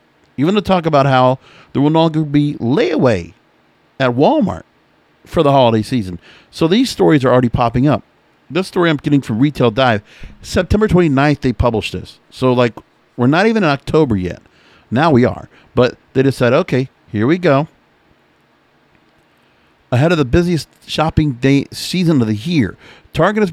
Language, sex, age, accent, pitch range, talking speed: English, male, 50-69, American, 120-155 Hz, 165 wpm